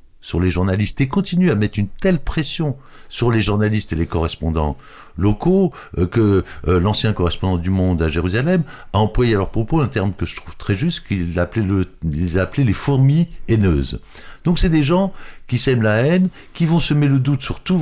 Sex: male